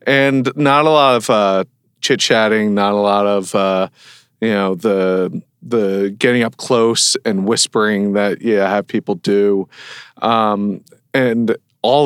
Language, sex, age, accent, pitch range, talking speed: English, male, 40-59, American, 100-120 Hz, 150 wpm